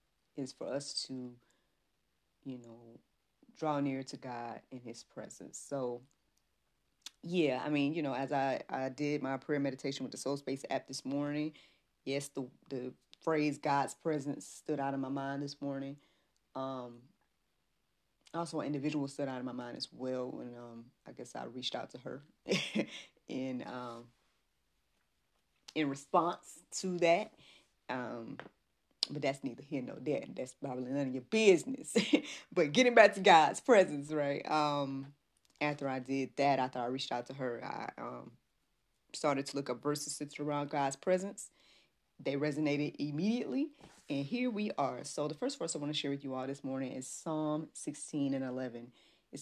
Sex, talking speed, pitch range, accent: female, 170 wpm, 130-155 Hz, American